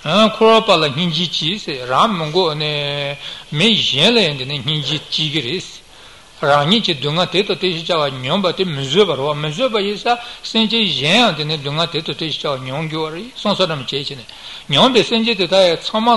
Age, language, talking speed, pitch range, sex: 60-79, Italian, 105 wpm, 145-200 Hz, male